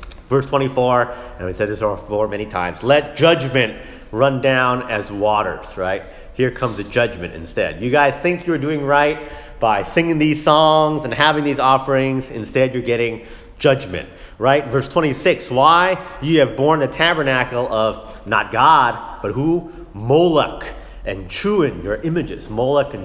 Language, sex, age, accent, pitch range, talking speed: English, male, 30-49, American, 100-145 Hz, 155 wpm